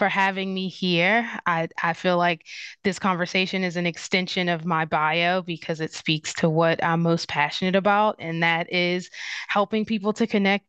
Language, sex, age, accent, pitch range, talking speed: English, female, 20-39, American, 165-185 Hz, 180 wpm